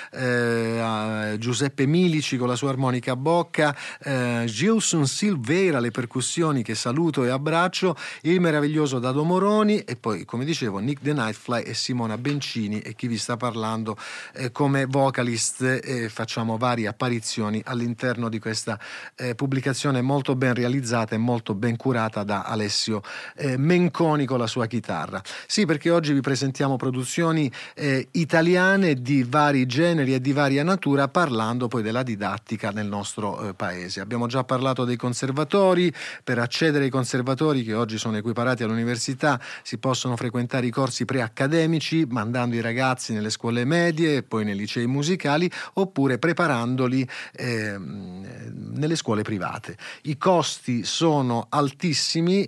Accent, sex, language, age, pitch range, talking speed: native, male, Italian, 30-49, 115-145 Hz, 145 wpm